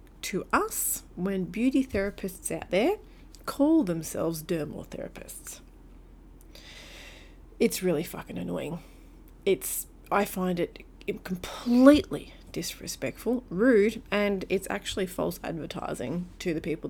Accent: Australian